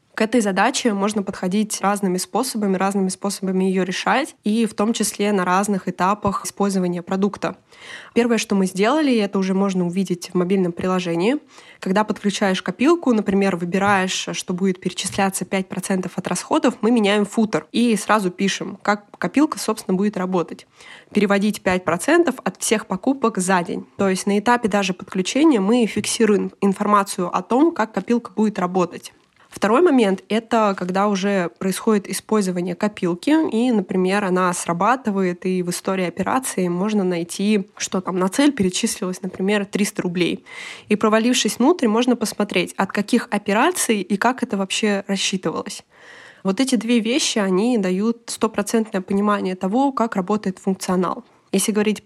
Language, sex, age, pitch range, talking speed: Russian, female, 20-39, 190-225 Hz, 150 wpm